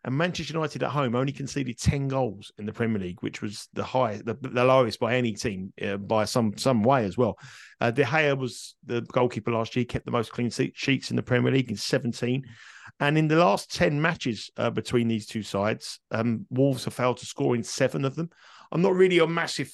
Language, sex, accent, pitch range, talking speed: English, male, British, 115-135 Hz, 230 wpm